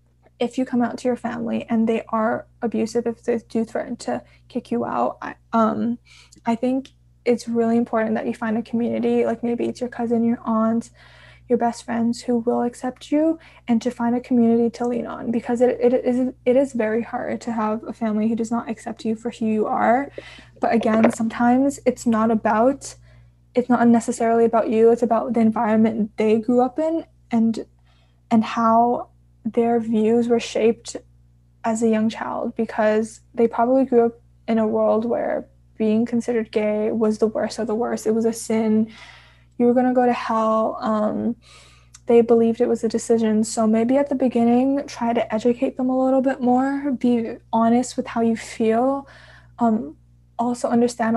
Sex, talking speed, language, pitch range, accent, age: female, 190 wpm, English, 220-240 Hz, American, 10-29